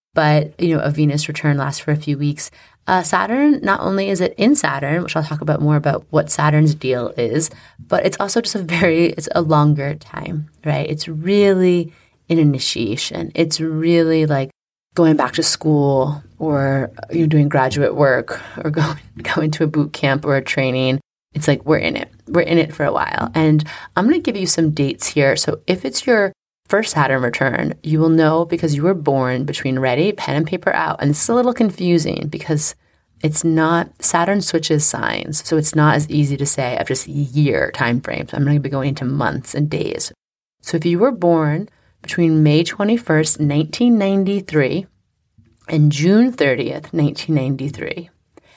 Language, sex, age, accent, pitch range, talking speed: English, female, 20-39, American, 145-170 Hz, 190 wpm